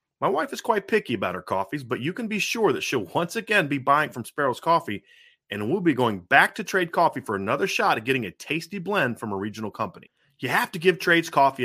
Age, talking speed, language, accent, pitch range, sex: 30-49, 245 wpm, English, American, 125-190 Hz, male